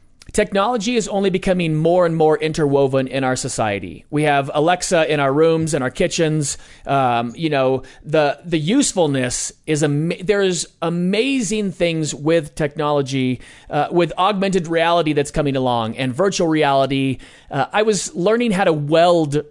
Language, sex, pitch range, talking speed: English, male, 145-185 Hz, 150 wpm